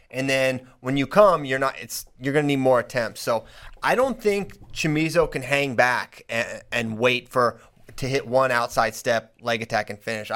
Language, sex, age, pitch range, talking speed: English, male, 30-49, 125-155 Hz, 190 wpm